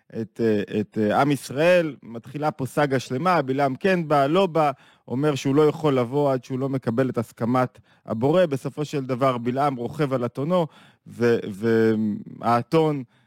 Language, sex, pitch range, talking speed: Hebrew, male, 115-145 Hz, 155 wpm